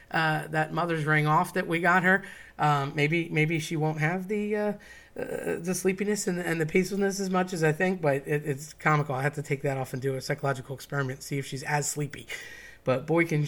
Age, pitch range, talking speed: 30-49, 140-175 Hz, 230 wpm